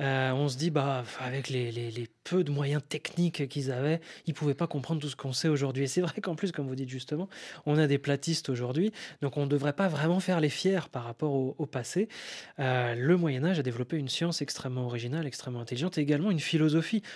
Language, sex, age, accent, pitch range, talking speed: French, male, 20-39, French, 135-175 Hz, 240 wpm